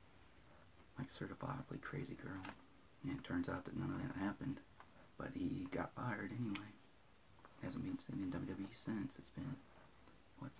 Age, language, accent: 30-49, English, American